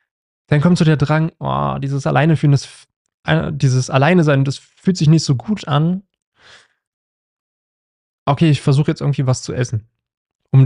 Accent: German